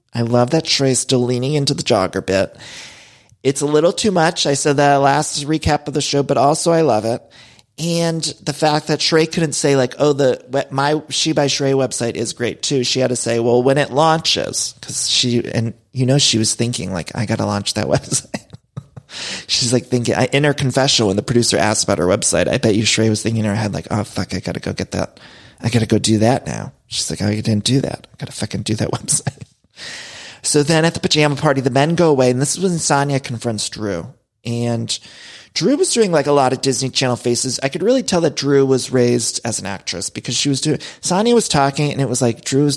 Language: English